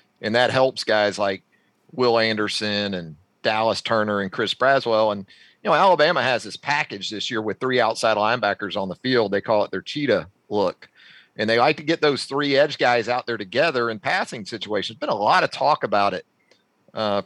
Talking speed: 200 wpm